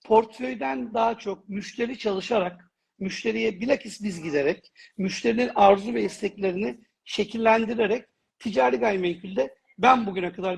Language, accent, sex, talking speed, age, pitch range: Turkish, native, male, 115 wpm, 60-79, 200-235 Hz